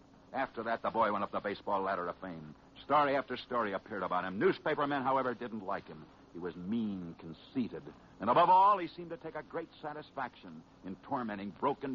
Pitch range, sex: 95-150 Hz, male